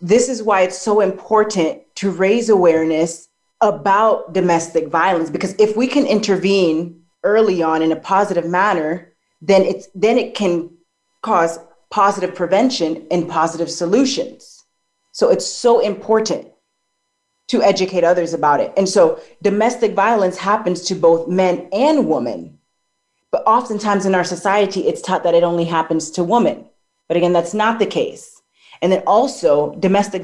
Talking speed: 150 wpm